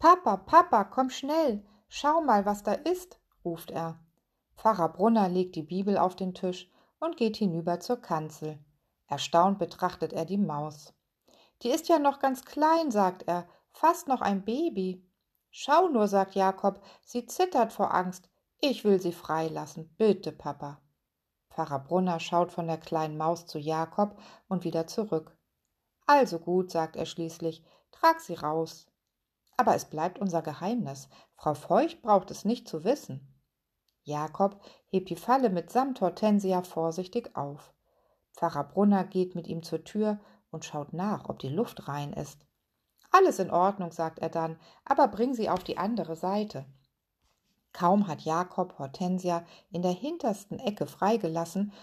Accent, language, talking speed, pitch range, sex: German, German, 155 wpm, 165-215 Hz, female